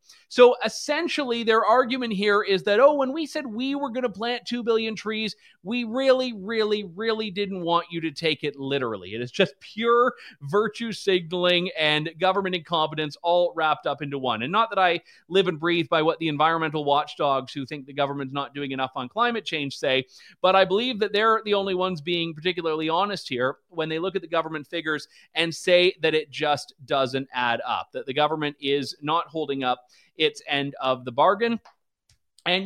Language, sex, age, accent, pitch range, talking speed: English, male, 40-59, American, 150-210 Hz, 195 wpm